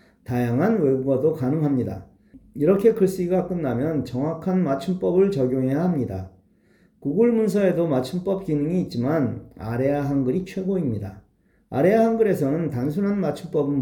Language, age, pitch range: Korean, 40-59, 125-190 Hz